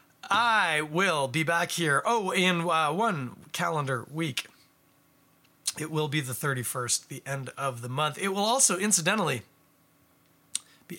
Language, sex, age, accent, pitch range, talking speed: English, male, 30-49, American, 130-175 Hz, 140 wpm